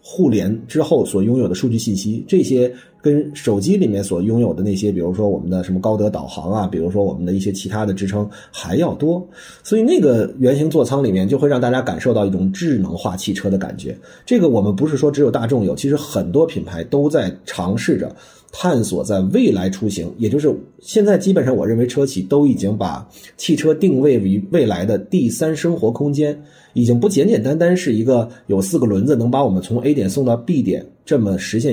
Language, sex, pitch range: Chinese, male, 100-150 Hz